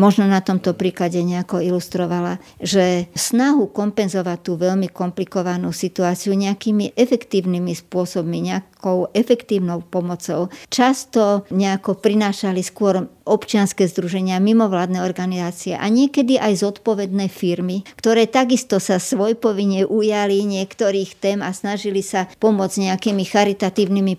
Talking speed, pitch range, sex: 110 wpm, 180-210 Hz, male